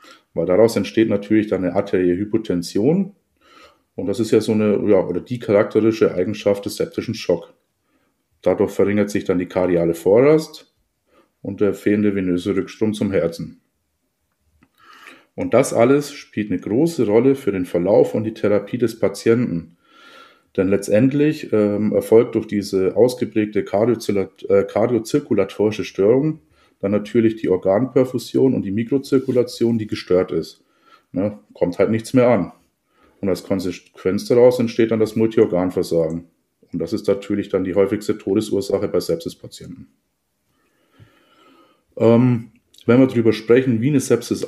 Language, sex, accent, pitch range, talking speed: German, male, German, 100-125 Hz, 140 wpm